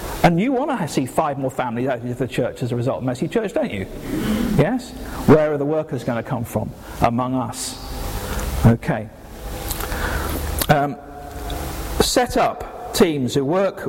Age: 50-69